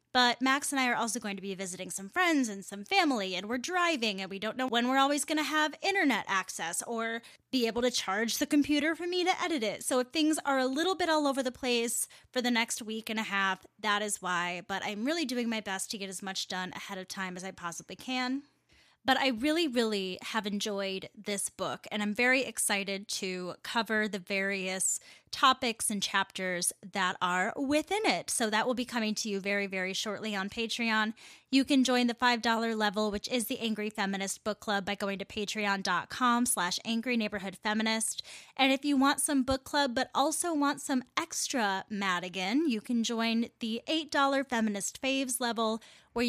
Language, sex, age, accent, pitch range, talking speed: English, female, 10-29, American, 195-260 Hz, 205 wpm